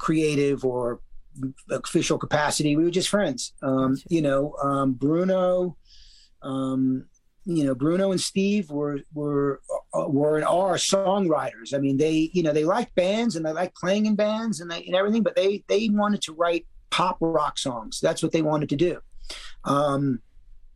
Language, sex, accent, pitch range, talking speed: English, male, American, 140-185 Hz, 170 wpm